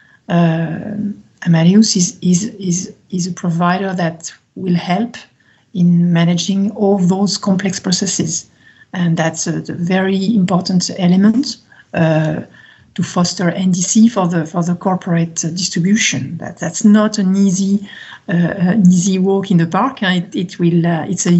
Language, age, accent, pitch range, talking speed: English, 50-69, French, 175-210 Hz, 150 wpm